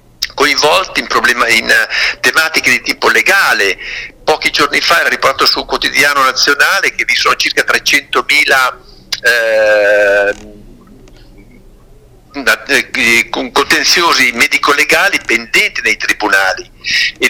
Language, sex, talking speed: Italian, male, 95 wpm